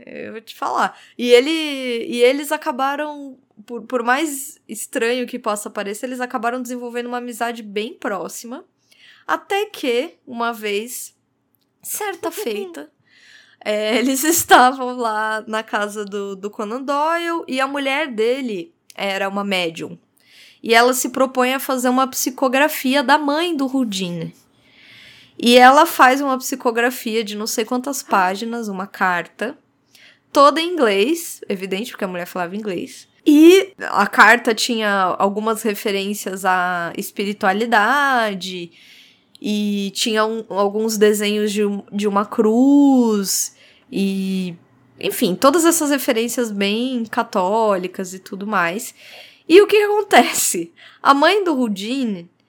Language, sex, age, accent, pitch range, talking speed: Portuguese, female, 20-39, Brazilian, 210-270 Hz, 130 wpm